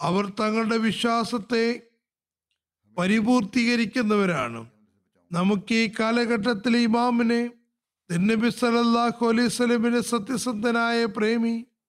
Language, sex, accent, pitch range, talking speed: Malayalam, male, native, 205-235 Hz, 65 wpm